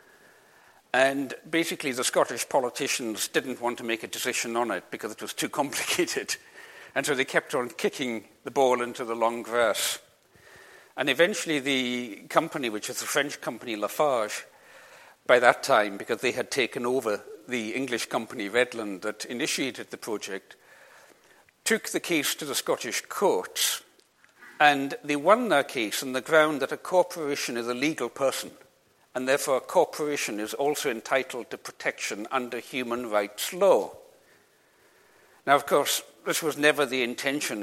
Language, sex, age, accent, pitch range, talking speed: English, male, 60-79, British, 115-160 Hz, 160 wpm